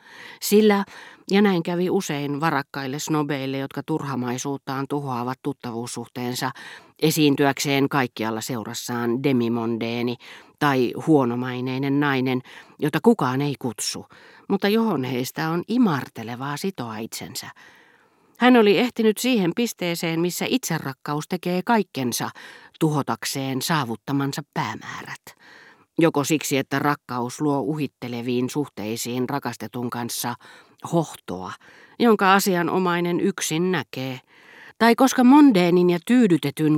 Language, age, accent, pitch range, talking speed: Finnish, 40-59, native, 125-175 Hz, 100 wpm